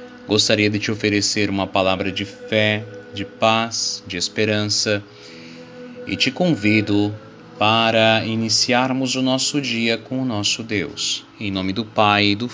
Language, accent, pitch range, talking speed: Portuguese, Brazilian, 100-115 Hz, 140 wpm